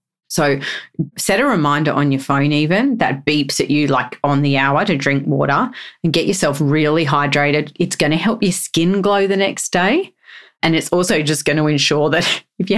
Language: English